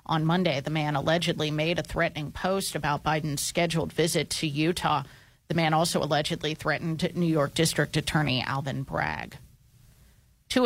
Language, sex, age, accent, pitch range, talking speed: English, female, 30-49, American, 155-185 Hz, 150 wpm